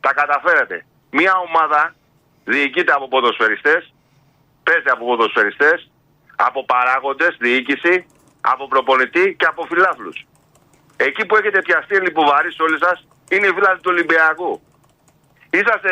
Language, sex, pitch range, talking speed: Greek, male, 170-230 Hz, 130 wpm